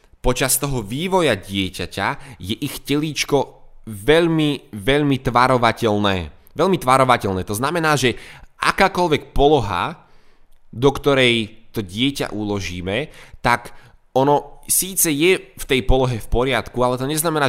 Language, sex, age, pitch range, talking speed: Slovak, male, 20-39, 100-130 Hz, 115 wpm